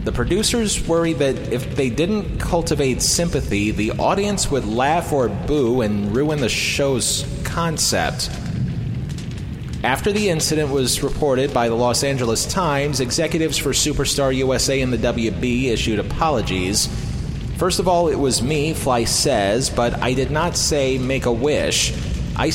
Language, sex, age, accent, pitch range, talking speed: English, male, 30-49, American, 115-150 Hz, 150 wpm